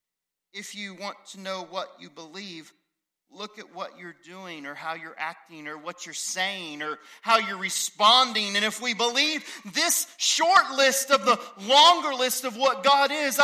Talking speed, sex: 180 wpm, male